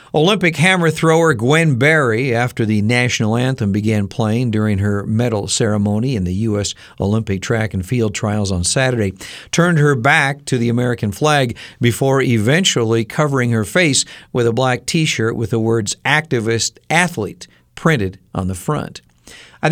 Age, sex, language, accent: 50-69, male, Japanese, American